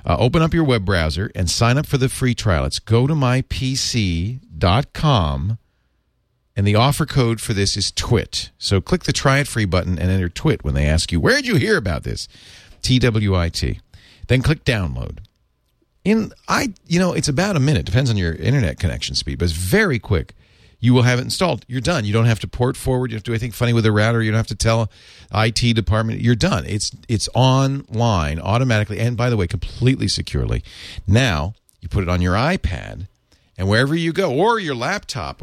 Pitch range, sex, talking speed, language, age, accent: 95-130 Hz, male, 215 wpm, English, 40-59, American